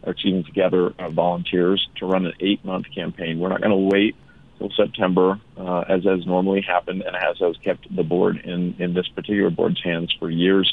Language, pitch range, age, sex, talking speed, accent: English, 90-95 Hz, 40-59, male, 195 wpm, American